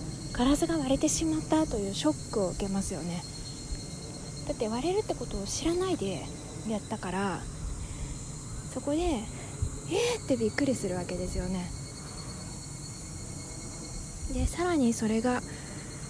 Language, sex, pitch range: Japanese, female, 190-275 Hz